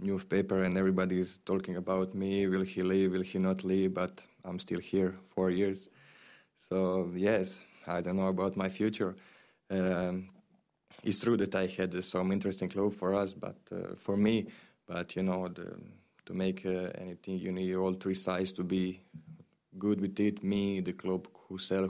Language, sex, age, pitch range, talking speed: French, male, 20-39, 95-100 Hz, 185 wpm